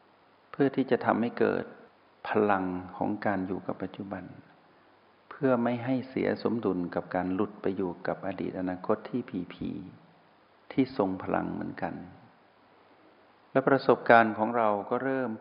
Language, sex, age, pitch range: Thai, male, 60-79, 95-120 Hz